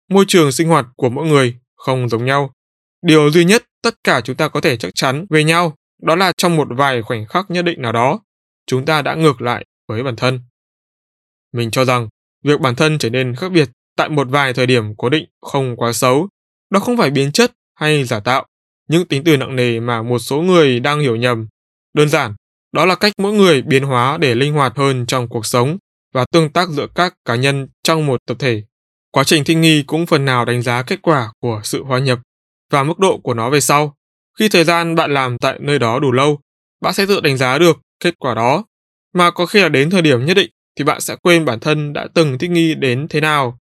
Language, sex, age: Vietnamese, male, 20-39